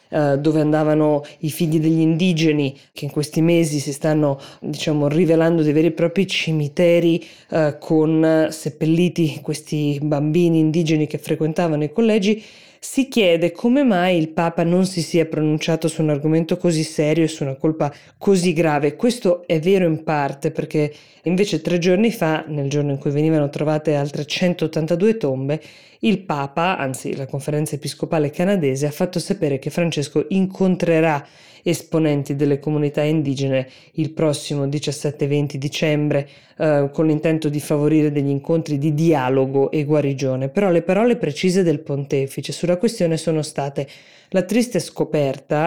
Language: Italian